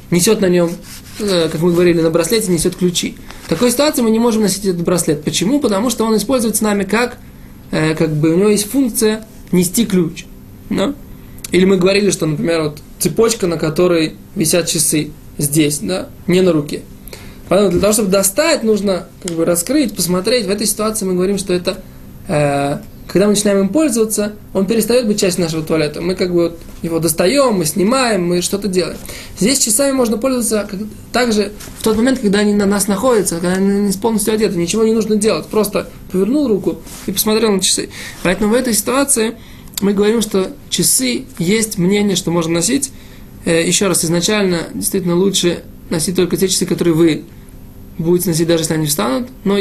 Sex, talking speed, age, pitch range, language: male, 180 wpm, 20-39, 175-220 Hz, Russian